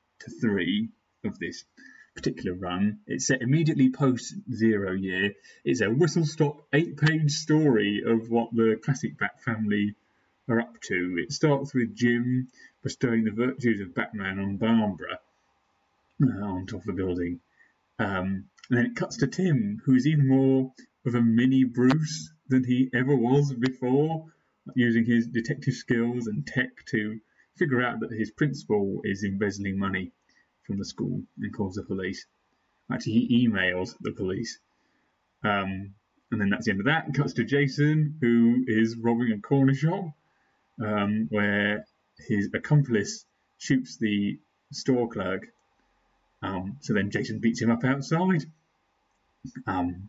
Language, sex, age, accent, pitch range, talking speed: English, male, 30-49, British, 105-140 Hz, 145 wpm